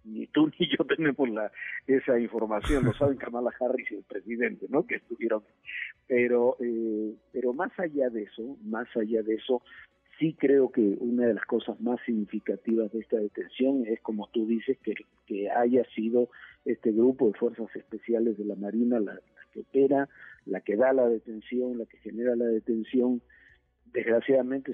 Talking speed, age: 175 wpm, 50-69